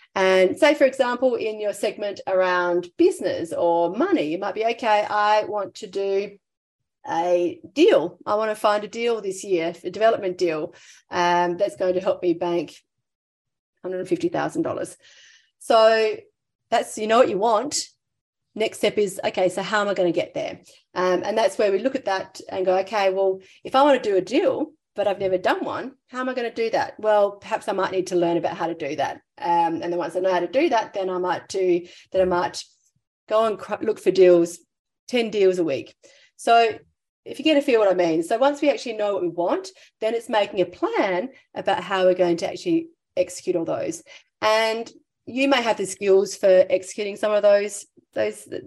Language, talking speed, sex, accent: English, 215 wpm, female, Australian